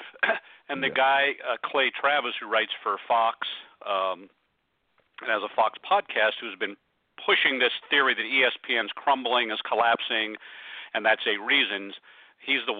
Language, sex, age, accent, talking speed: English, male, 50-69, American, 150 wpm